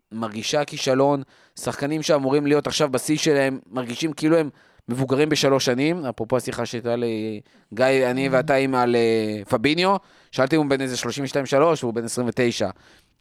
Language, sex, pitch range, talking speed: Hebrew, male, 125-155 Hz, 150 wpm